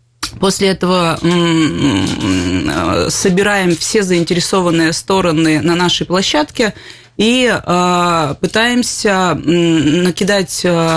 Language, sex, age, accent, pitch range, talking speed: Russian, female, 20-39, native, 165-195 Hz, 65 wpm